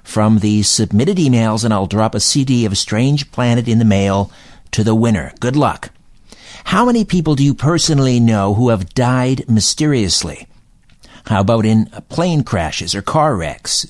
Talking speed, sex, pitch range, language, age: 170 wpm, male, 105-140 Hz, English, 50-69